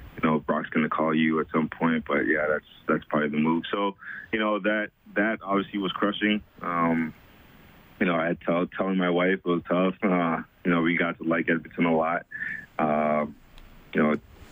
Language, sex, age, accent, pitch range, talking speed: English, male, 20-39, American, 85-95 Hz, 210 wpm